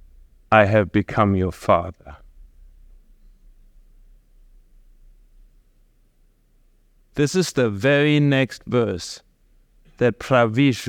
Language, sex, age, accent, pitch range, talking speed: English, male, 50-69, German, 95-135 Hz, 70 wpm